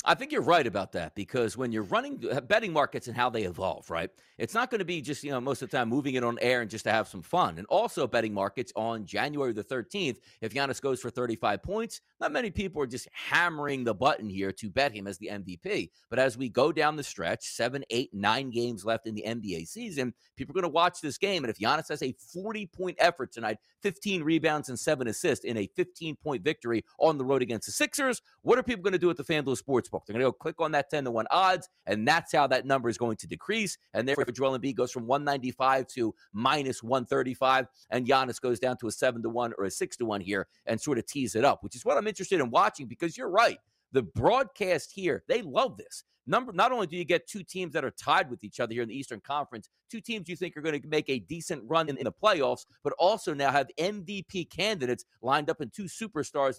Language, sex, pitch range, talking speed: English, male, 120-170 Hz, 250 wpm